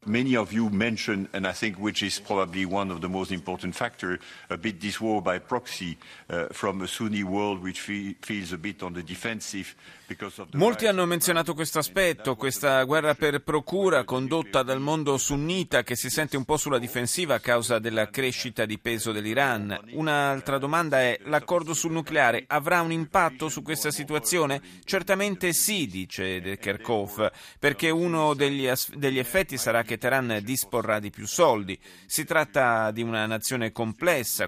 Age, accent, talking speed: 50-69, native, 110 wpm